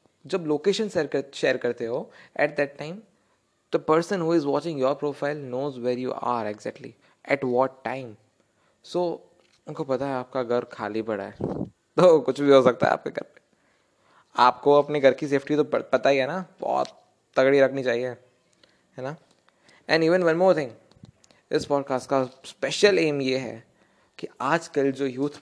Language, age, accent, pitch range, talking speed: Hindi, 20-39, native, 130-165 Hz, 175 wpm